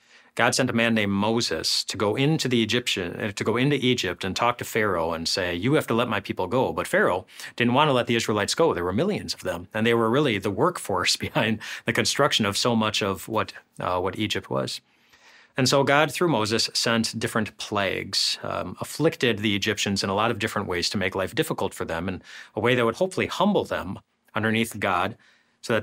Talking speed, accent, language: 225 wpm, American, English